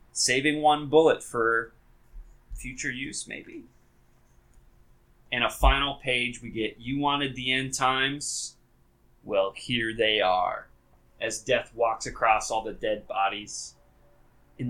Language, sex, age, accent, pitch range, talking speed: English, male, 20-39, American, 115-145 Hz, 125 wpm